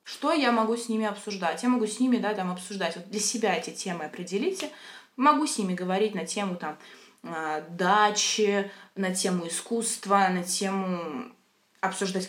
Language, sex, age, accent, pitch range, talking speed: Russian, female, 20-39, native, 190-240 Hz, 165 wpm